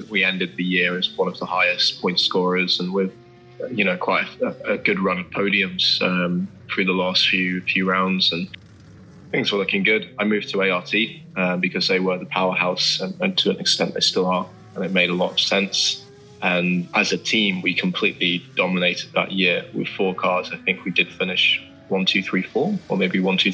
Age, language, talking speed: 20-39, English, 215 wpm